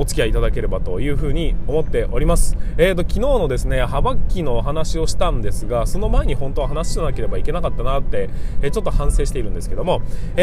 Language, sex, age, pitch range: Japanese, male, 20-39, 120-175 Hz